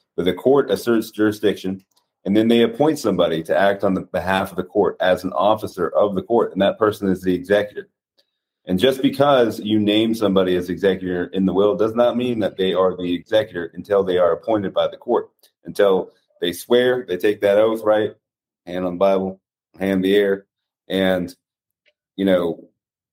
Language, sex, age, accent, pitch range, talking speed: English, male, 30-49, American, 95-110 Hz, 190 wpm